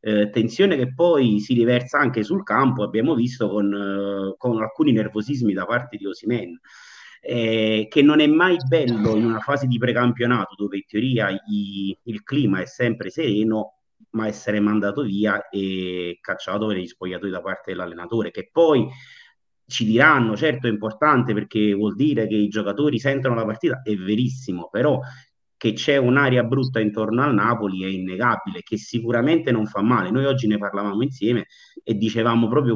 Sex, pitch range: male, 105-130 Hz